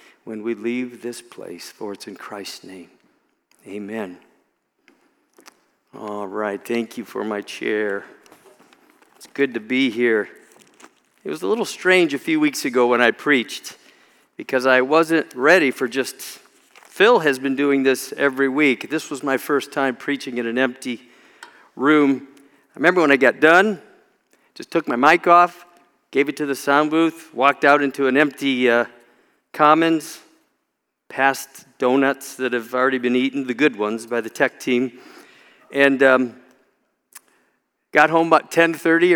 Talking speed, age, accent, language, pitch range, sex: 155 wpm, 50-69, American, English, 125-165 Hz, male